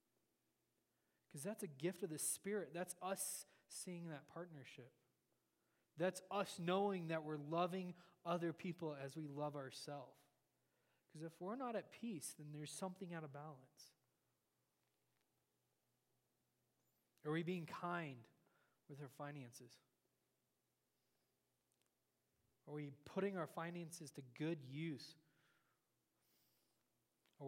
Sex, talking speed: male, 115 wpm